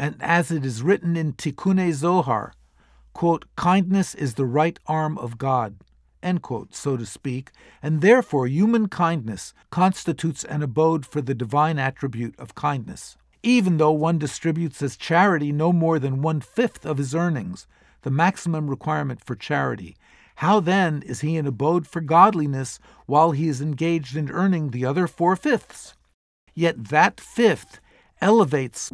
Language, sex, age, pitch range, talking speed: English, male, 50-69, 135-180 Hz, 155 wpm